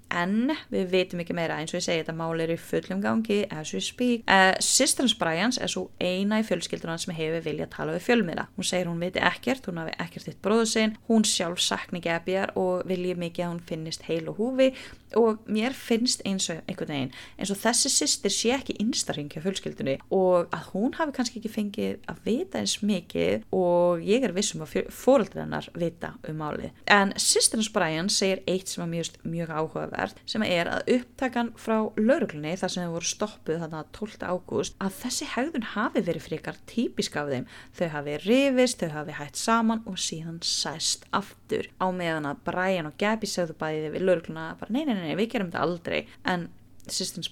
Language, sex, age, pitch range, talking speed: English, female, 20-39, 165-220 Hz, 195 wpm